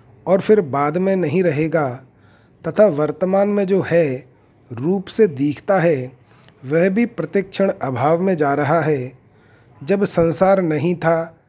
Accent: native